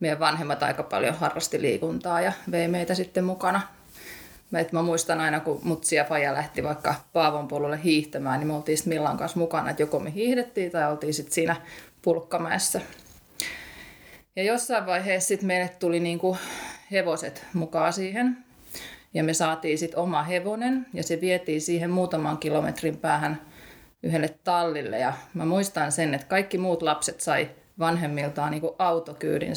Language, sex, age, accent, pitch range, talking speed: Finnish, female, 30-49, native, 160-190 Hz, 150 wpm